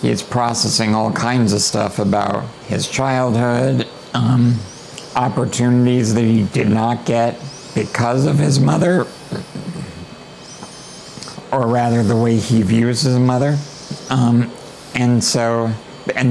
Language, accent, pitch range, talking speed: English, American, 115-130 Hz, 120 wpm